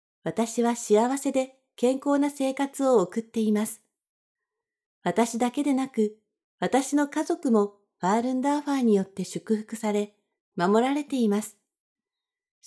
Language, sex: Japanese, female